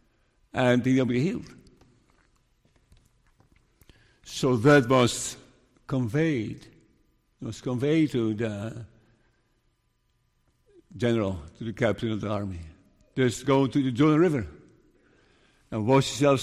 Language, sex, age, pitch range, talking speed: English, male, 60-79, 120-195 Hz, 105 wpm